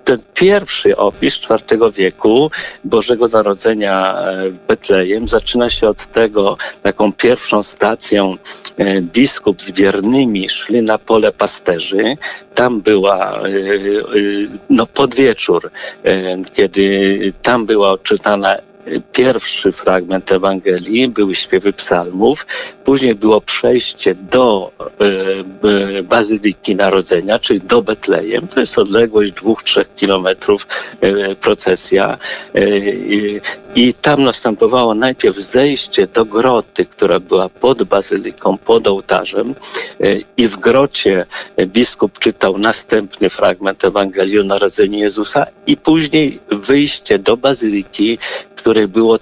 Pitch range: 100-135 Hz